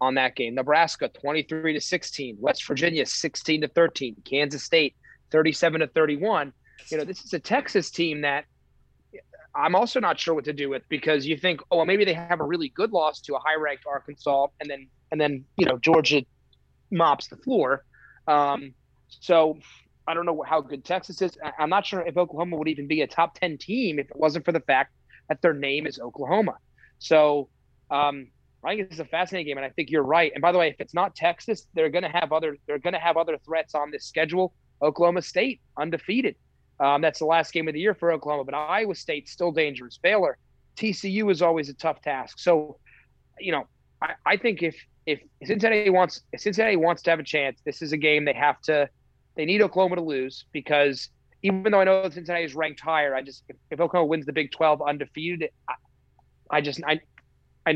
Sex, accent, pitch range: male, American, 140-170 Hz